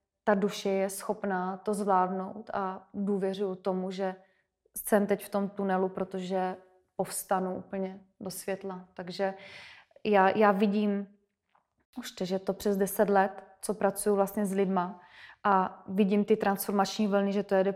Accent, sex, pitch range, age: native, female, 190-205 Hz, 20-39